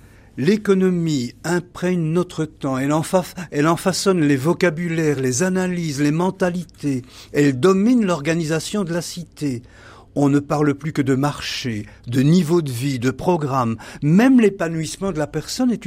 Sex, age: male, 50-69